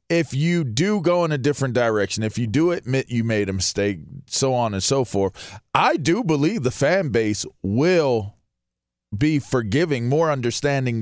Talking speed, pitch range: 175 wpm, 110-135 Hz